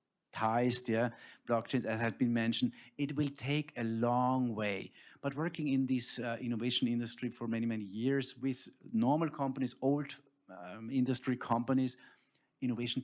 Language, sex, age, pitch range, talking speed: English, male, 50-69, 120-145 Hz, 145 wpm